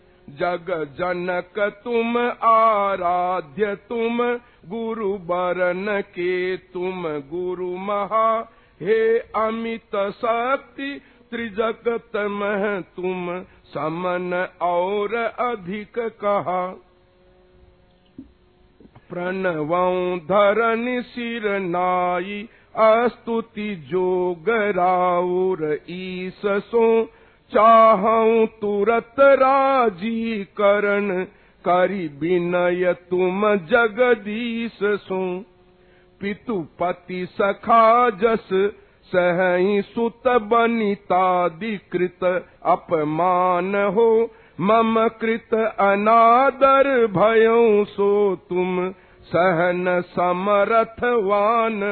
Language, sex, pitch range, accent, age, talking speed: Hindi, male, 180-225 Hz, native, 50-69, 60 wpm